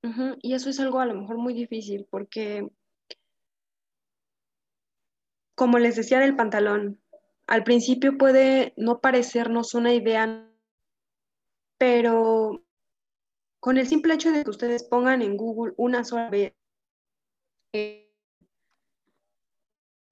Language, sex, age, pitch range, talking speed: Spanish, female, 20-39, 210-245 Hz, 115 wpm